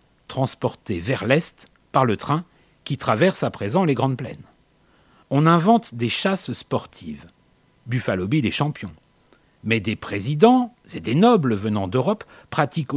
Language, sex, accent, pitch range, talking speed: French, male, French, 115-170 Hz, 145 wpm